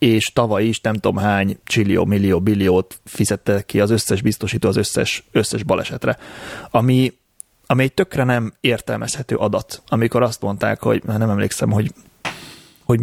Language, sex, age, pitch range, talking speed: Hungarian, male, 30-49, 105-125 Hz, 150 wpm